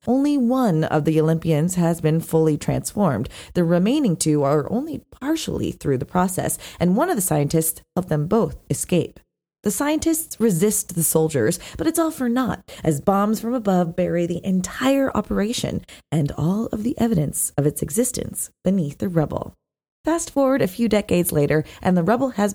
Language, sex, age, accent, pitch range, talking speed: English, female, 20-39, American, 160-230 Hz, 175 wpm